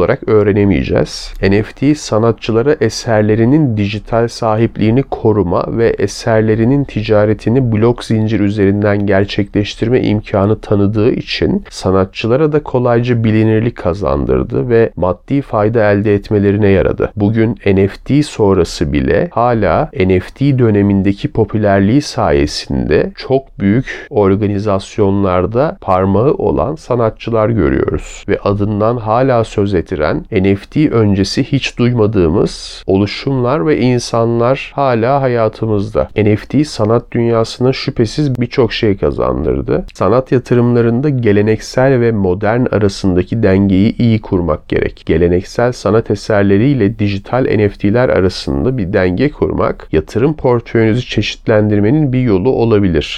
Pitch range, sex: 100-120 Hz, male